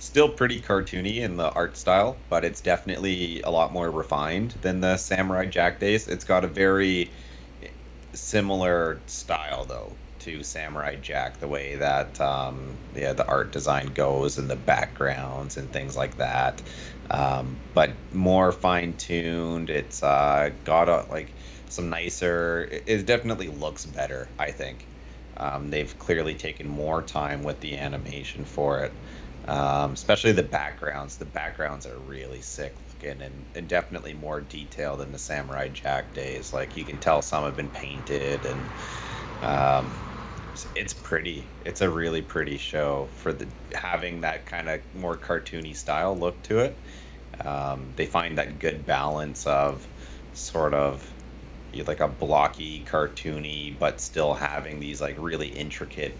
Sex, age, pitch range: male, 30-49, 65-85 Hz